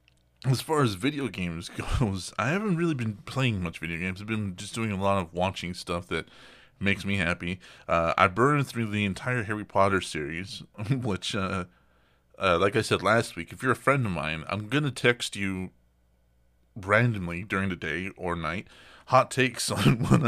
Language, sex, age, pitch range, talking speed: English, male, 30-49, 85-120 Hz, 190 wpm